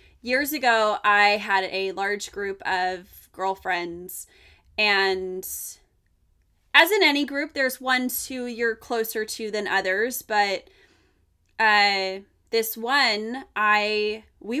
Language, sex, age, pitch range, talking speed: English, female, 20-39, 195-260 Hz, 115 wpm